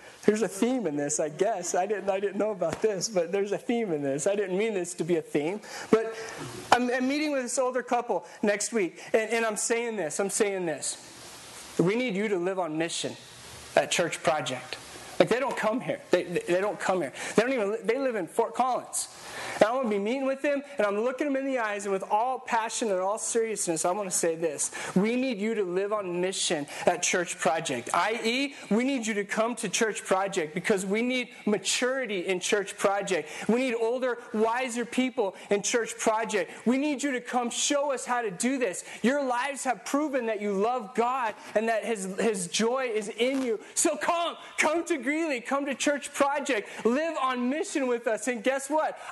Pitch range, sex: 200-255 Hz, male